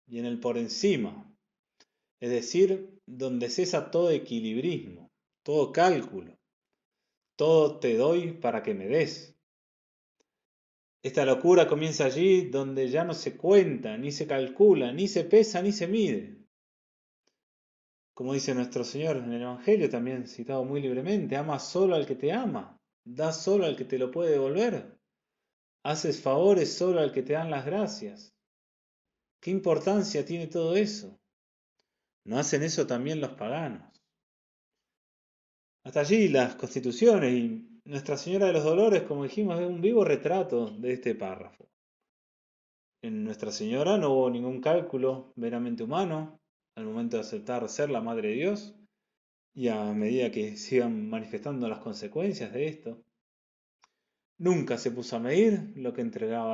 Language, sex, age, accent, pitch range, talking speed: Spanish, male, 30-49, Argentinian, 125-205 Hz, 145 wpm